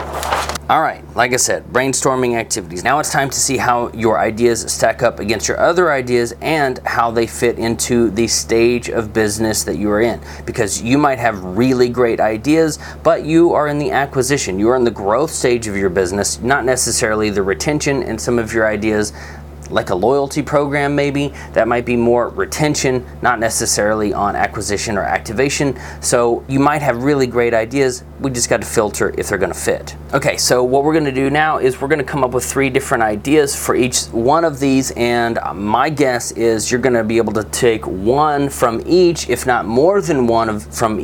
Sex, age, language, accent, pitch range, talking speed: male, 30-49, English, American, 105-130 Hz, 210 wpm